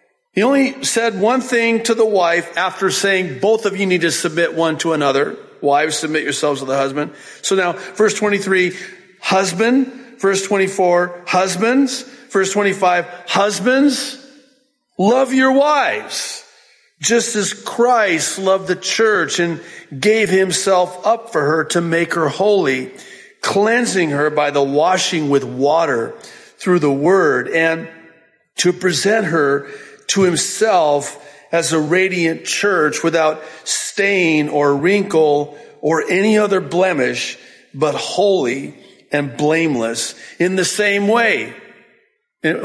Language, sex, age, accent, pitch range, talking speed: English, male, 50-69, American, 150-210 Hz, 130 wpm